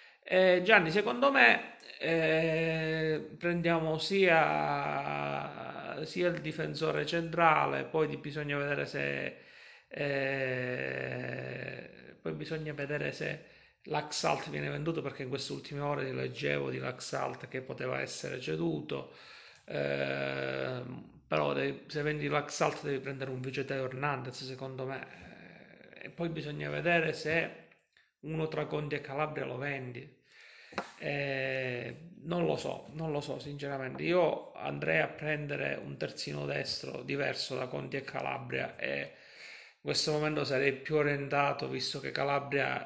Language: Italian